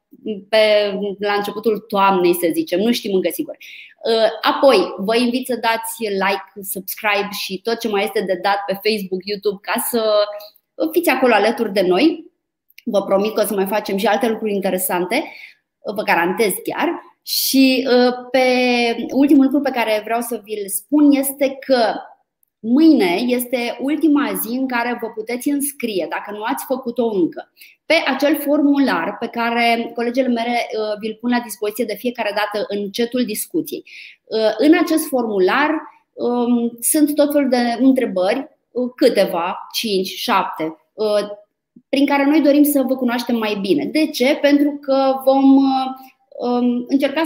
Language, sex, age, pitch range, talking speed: Romanian, female, 20-39, 210-285 Hz, 150 wpm